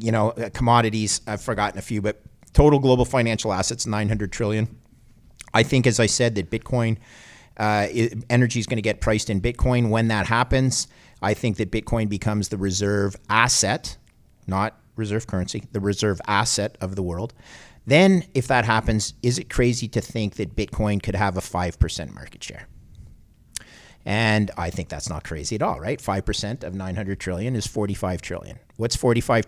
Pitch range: 100-120 Hz